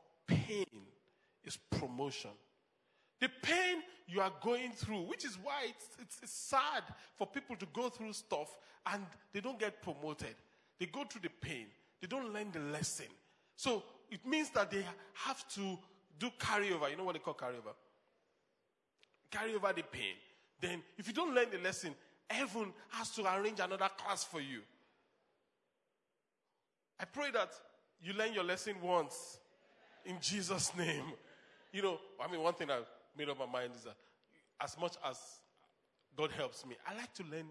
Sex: male